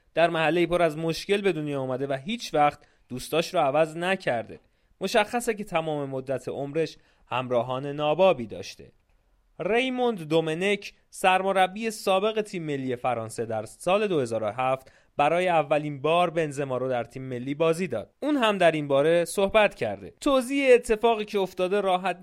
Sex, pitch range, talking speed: male, 140-195 Hz, 145 wpm